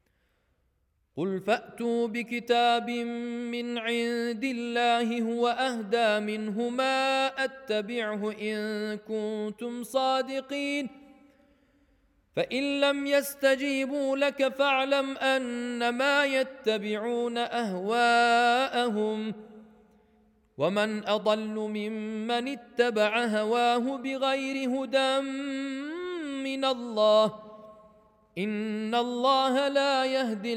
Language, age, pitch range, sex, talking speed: Urdu, 40-59, 215-250 Hz, male, 65 wpm